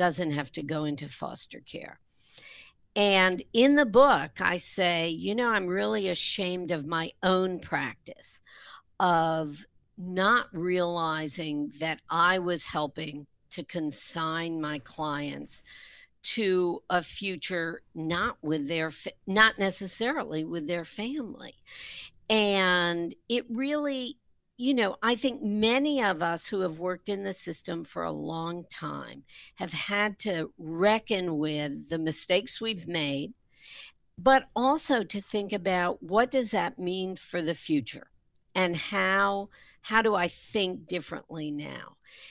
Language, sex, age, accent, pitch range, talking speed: English, female, 50-69, American, 160-215 Hz, 130 wpm